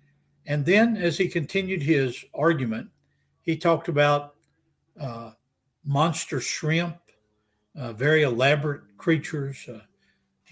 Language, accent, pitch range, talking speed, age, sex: English, American, 130-165 Hz, 105 wpm, 60-79, male